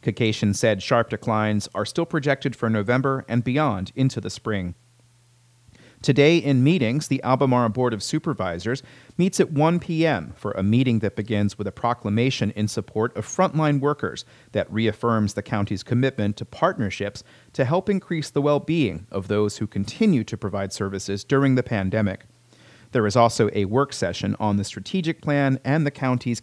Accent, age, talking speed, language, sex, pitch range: American, 40-59, 170 wpm, English, male, 105-140 Hz